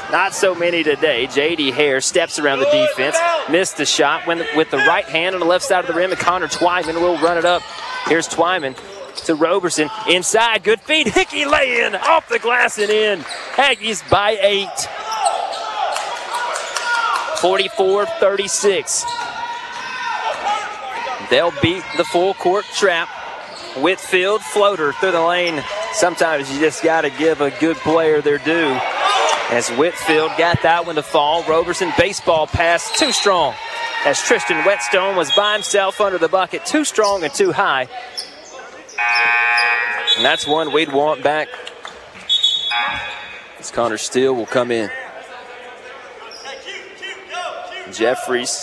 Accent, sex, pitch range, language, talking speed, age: American, male, 150-240 Hz, English, 135 wpm, 30-49